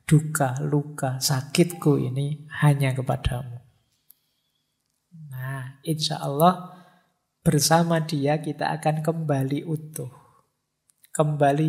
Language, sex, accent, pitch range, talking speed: English, male, Indonesian, 135-155 Hz, 80 wpm